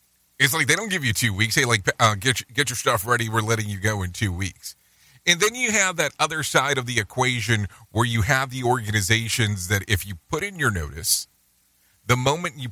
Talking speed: 225 wpm